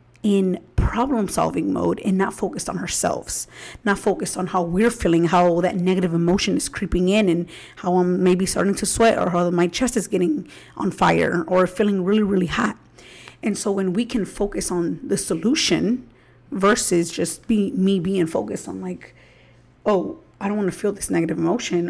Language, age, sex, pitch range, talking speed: English, 30-49, female, 175-210 Hz, 185 wpm